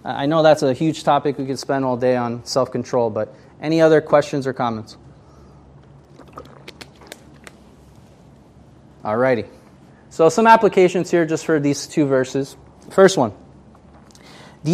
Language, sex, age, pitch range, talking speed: English, male, 20-39, 125-175 Hz, 130 wpm